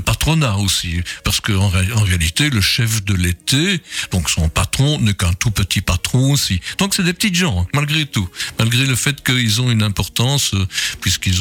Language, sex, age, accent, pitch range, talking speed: French, male, 60-79, French, 105-135 Hz, 175 wpm